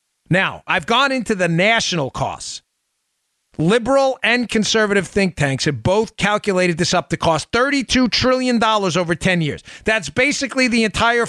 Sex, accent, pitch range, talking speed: male, American, 180-255 Hz, 150 wpm